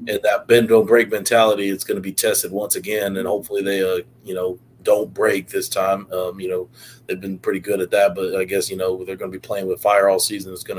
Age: 30-49